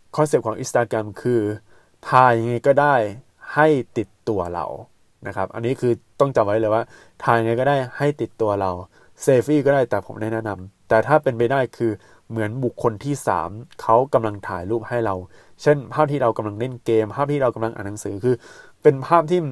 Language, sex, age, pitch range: Thai, male, 20-39, 110-135 Hz